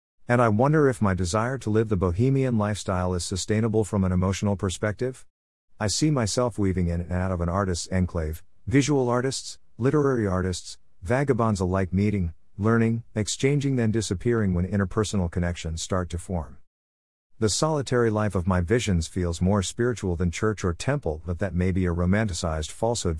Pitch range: 90-110 Hz